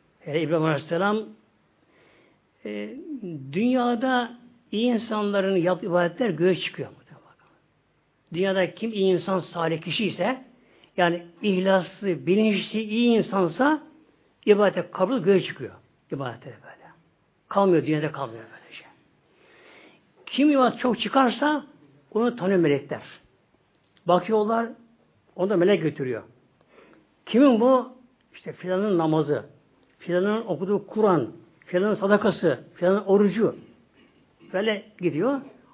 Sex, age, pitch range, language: male, 60-79, 165-225 Hz, Turkish